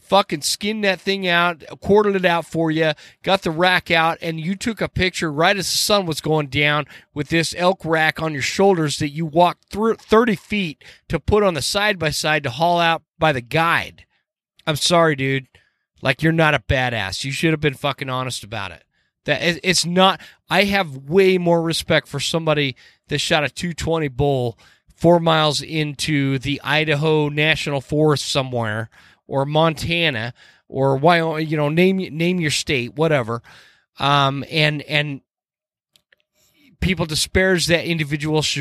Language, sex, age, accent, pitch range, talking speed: English, male, 30-49, American, 140-170 Hz, 165 wpm